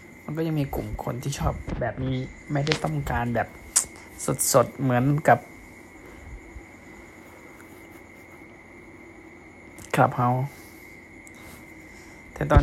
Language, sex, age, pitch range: Thai, male, 20-39, 115-140 Hz